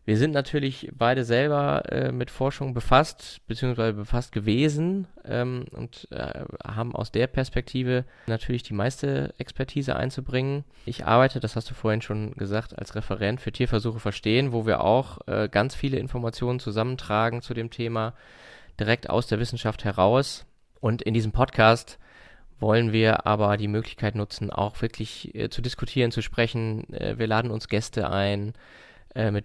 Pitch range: 110-125 Hz